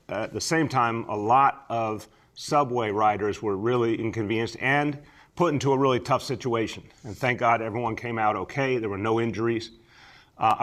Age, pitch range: 40-59, 105-125 Hz